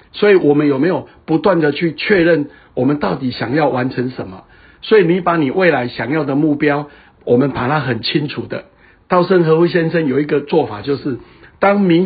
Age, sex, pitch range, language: 60-79, male, 135-170 Hz, Chinese